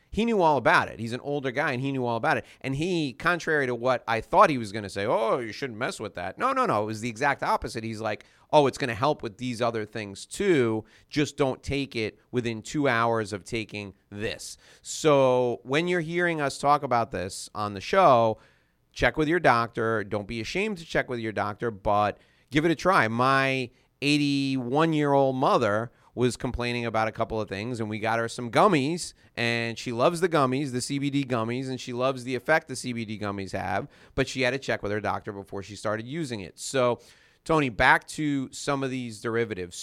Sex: male